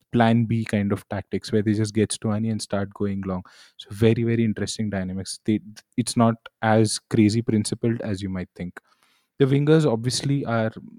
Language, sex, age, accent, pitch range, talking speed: English, male, 20-39, Indian, 105-130 Hz, 180 wpm